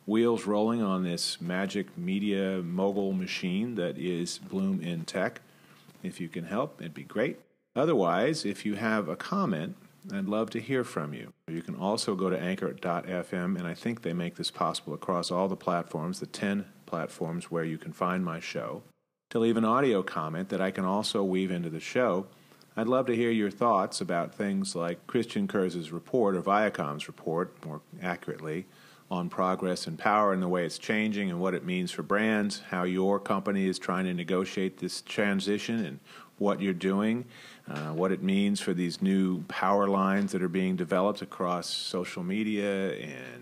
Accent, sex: American, male